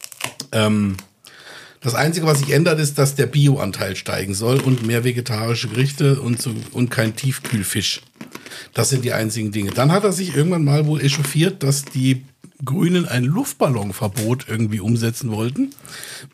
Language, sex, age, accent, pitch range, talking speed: German, male, 60-79, German, 120-150 Hz, 145 wpm